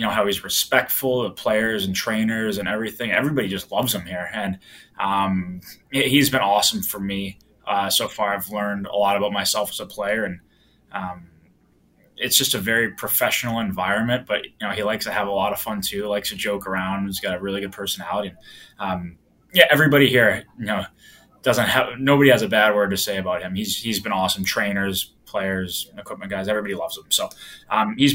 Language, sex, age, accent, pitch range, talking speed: English, male, 20-39, American, 95-110 Hz, 210 wpm